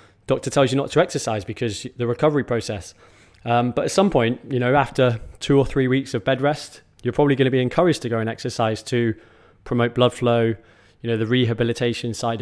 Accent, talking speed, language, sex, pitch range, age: British, 215 wpm, English, male, 115-130 Hz, 20-39